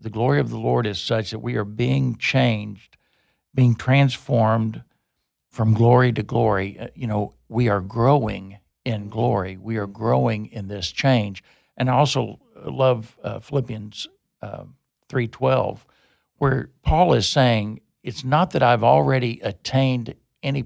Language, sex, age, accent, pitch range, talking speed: English, male, 60-79, American, 110-130 Hz, 150 wpm